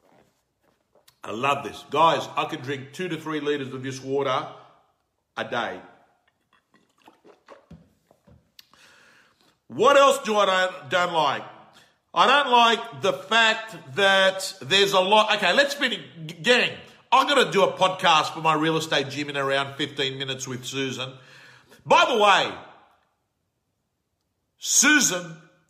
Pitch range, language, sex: 155-215 Hz, English, male